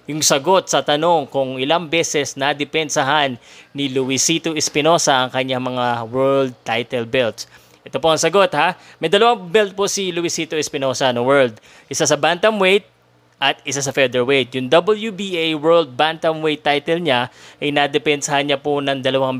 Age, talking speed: 20-39, 155 wpm